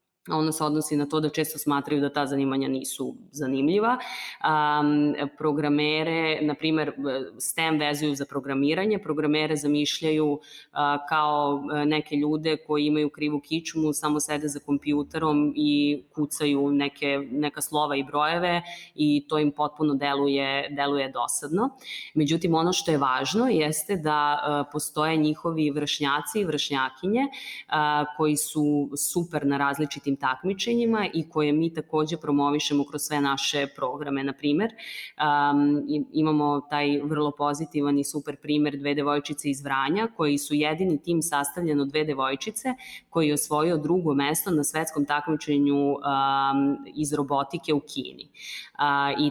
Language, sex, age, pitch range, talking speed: English, female, 20-39, 140-155 Hz, 135 wpm